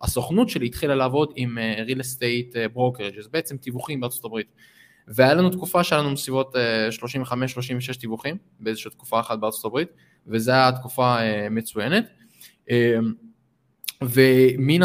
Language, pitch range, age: Hebrew, 120-150 Hz, 20-39